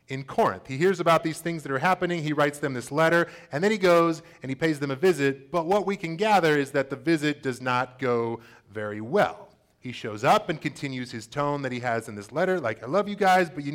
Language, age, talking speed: English, 30-49, 260 wpm